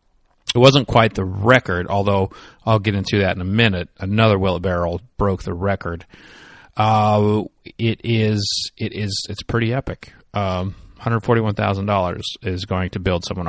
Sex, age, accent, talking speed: male, 30-49, American, 175 wpm